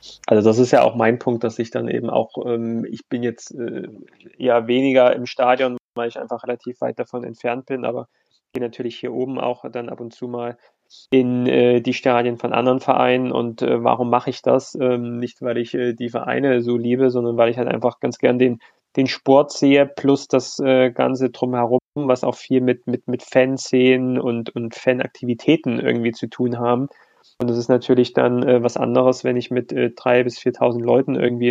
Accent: German